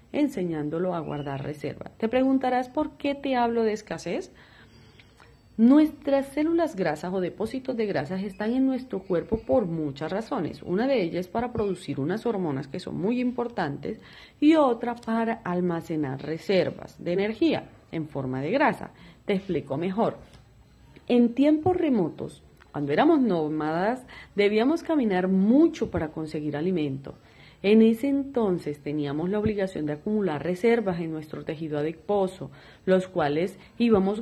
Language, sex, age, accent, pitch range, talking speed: Spanish, female, 40-59, Colombian, 165-240 Hz, 140 wpm